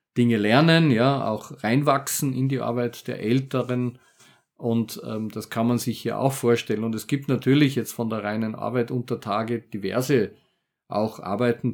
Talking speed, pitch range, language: 170 wpm, 110-130 Hz, German